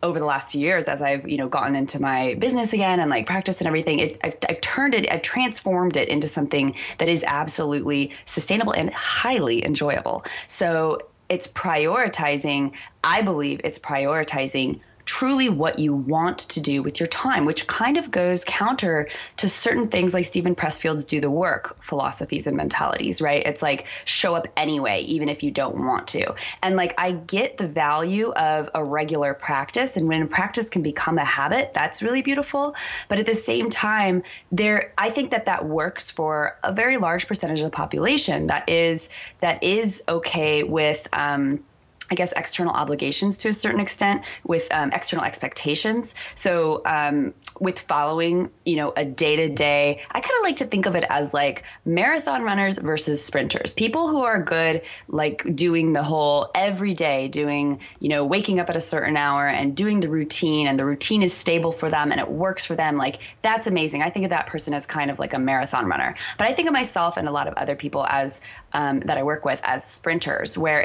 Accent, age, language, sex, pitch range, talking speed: American, 20-39, English, female, 145-195 Hz, 195 wpm